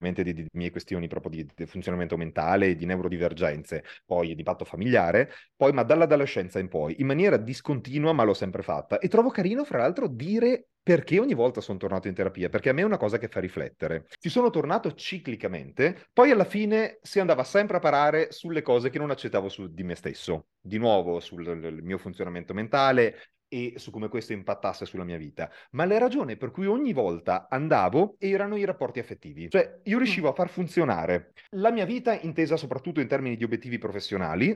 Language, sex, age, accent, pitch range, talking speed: Italian, male, 30-49, native, 100-165 Hz, 200 wpm